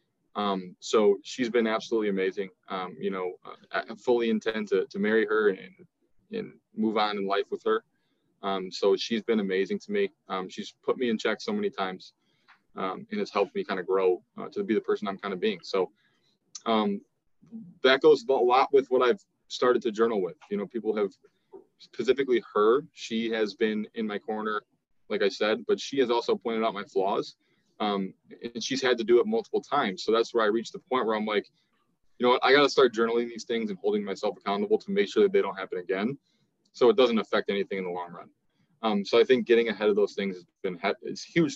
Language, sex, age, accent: English, male, 20-39, American